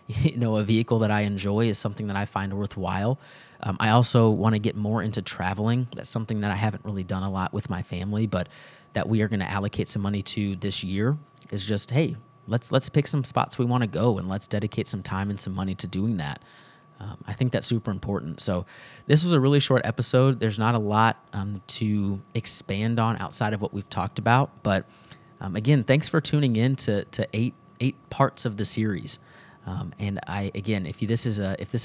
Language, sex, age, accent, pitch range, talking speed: English, male, 30-49, American, 100-125 Hz, 230 wpm